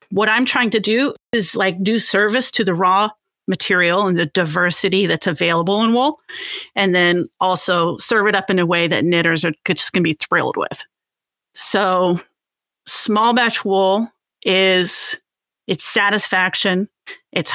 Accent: American